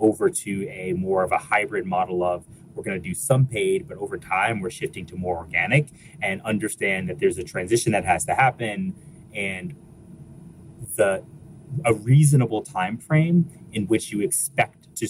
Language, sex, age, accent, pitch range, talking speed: English, male, 30-49, American, 110-175 Hz, 165 wpm